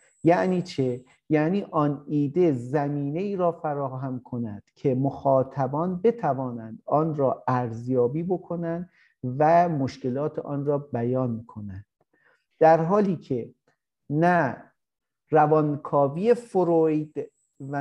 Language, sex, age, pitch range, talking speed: Indonesian, male, 50-69, 135-175 Hz, 100 wpm